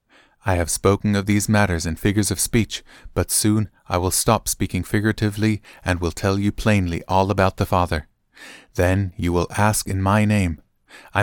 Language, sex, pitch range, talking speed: English, male, 90-110 Hz, 180 wpm